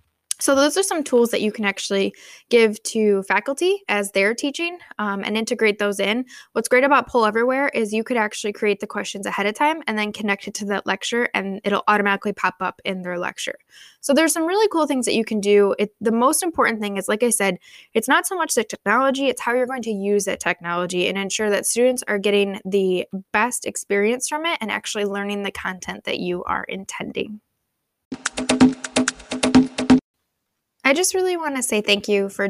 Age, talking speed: 10-29, 205 wpm